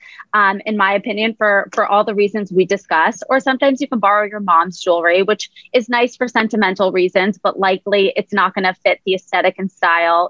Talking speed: 210 wpm